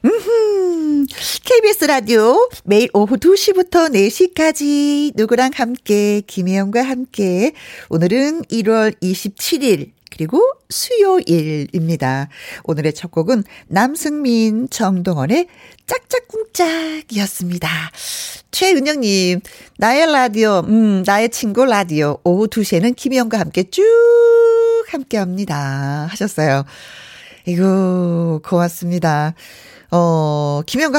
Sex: female